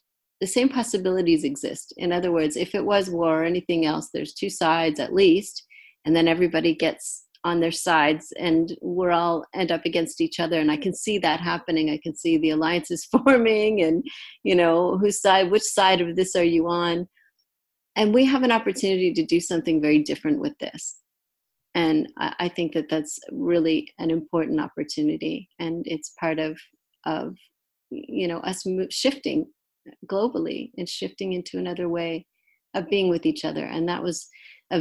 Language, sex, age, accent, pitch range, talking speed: English, female, 40-59, American, 160-200 Hz, 180 wpm